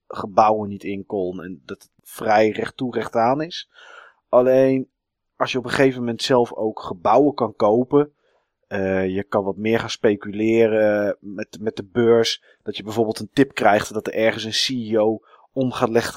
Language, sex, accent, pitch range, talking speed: Dutch, male, Dutch, 105-125 Hz, 180 wpm